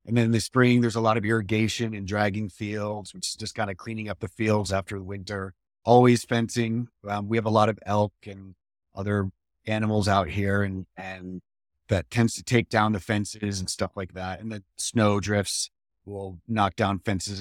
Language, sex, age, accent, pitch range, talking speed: English, male, 30-49, American, 100-120 Hz, 205 wpm